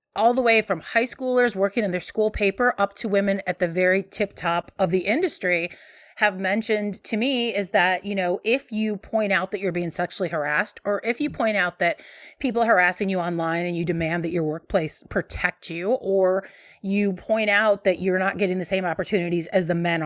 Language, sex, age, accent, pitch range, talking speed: English, female, 30-49, American, 185-235 Hz, 215 wpm